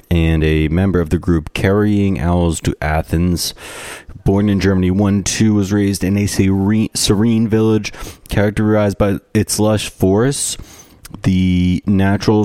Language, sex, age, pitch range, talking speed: English, male, 30-49, 80-95 Hz, 135 wpm